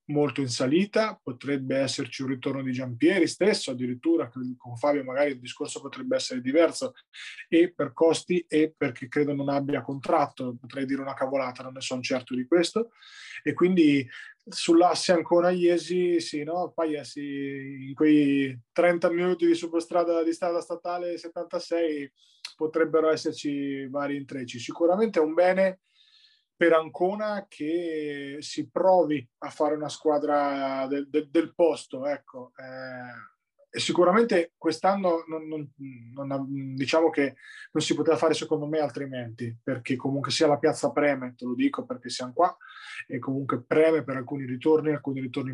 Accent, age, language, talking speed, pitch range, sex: native, 20-39, Italian, 150 wpm, 140-175 Hz, male